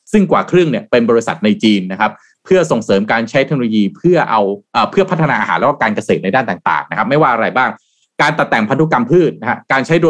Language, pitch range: Thai, 115-160 Hz